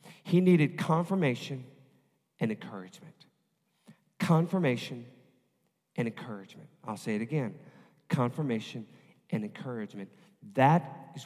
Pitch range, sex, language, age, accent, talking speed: 125-175 Hz, male, English, 40-59, American, 90 wpm